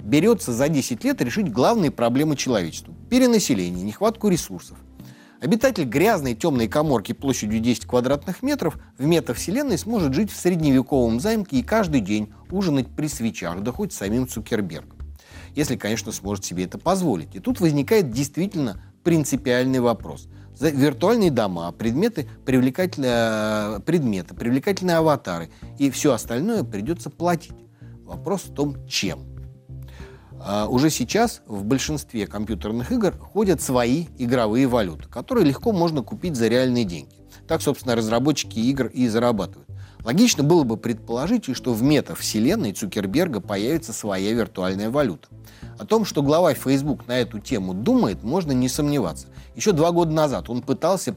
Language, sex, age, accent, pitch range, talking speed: Russian, male, 30-49, native, 110-155 Hz, 140 wpm